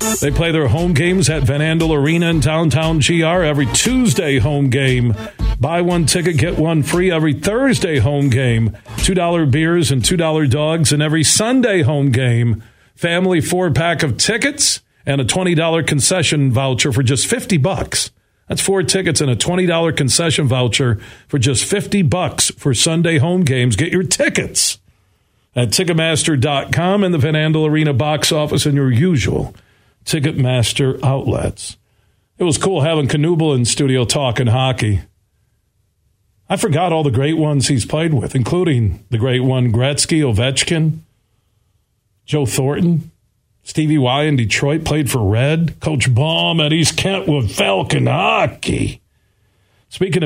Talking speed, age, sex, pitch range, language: 155 wpm, 50-69, male, 120-160 Hz, English